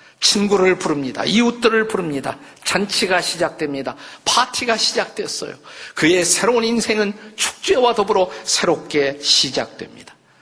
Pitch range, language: 140-185 Hz, Korean